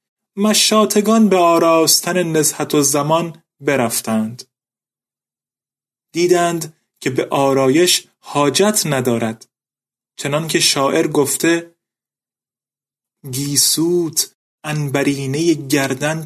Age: 30-49